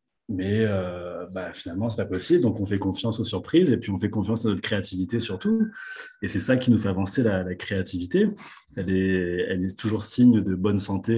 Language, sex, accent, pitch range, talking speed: French, male, French, 95-120 Hz, 220 wpm